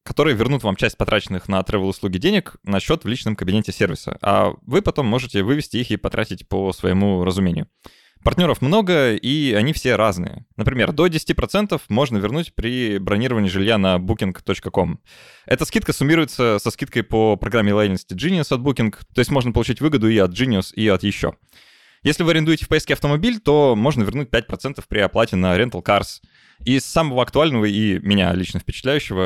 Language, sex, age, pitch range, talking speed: Russian, male, 20-39, 100-130 Hz, 175 wpm